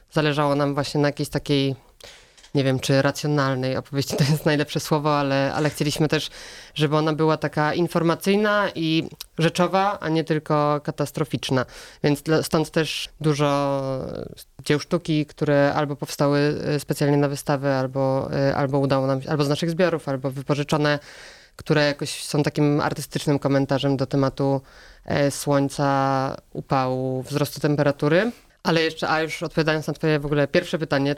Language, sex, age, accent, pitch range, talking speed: Polish, female, 20-39, native, 140-155 Hz, 145 wpm